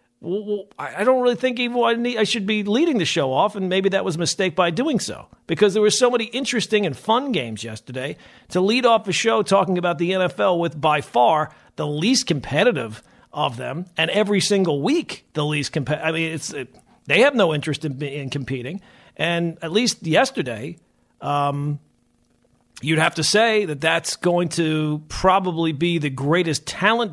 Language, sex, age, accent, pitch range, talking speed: English, male, 50-69, American, 150-215 Hz, 190 wpm